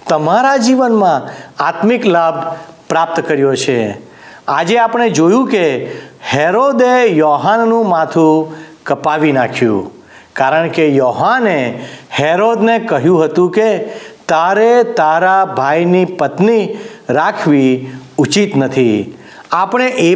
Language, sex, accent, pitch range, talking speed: Gujarati, male, native, 155-230 Hz, 95 wpm